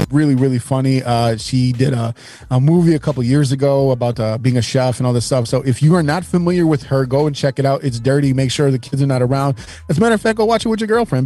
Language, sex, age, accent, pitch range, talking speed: English, male, 30-49, American, 120-140 Hz, 295 wpm